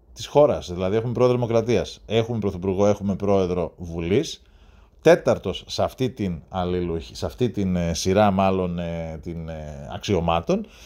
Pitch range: 75-115 Hz